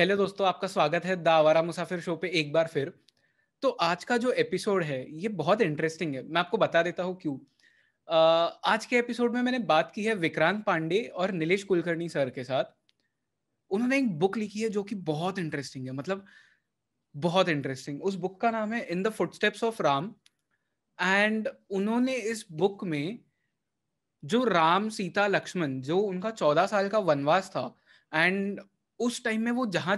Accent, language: native, Hindi